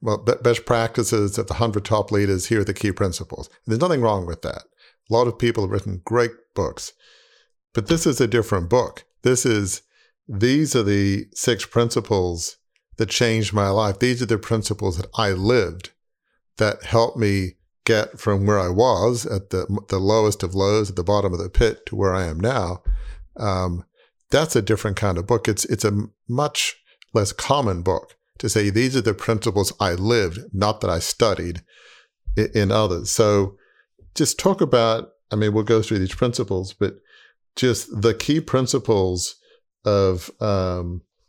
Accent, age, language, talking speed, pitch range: American, 50-69, English, 180 wpm, 95-115 Hz